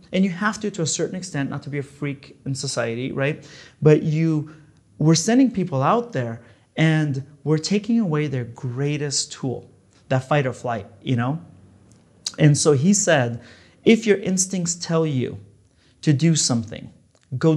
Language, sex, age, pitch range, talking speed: English, male, 30-49, 125-165 Hz, 165 wpm